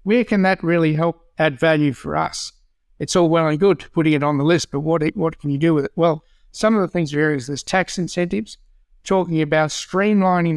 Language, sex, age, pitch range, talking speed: English, male, 60-79, 150-180 Hz, 235 wpm